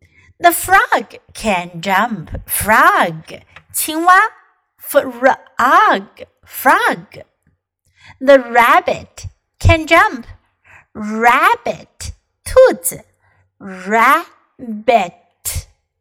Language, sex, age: Chinese, female, 60-79